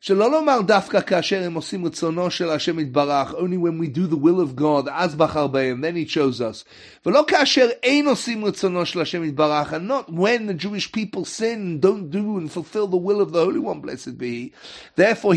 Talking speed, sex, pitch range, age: 145 wpm, male, 150-225 Hz, 30-49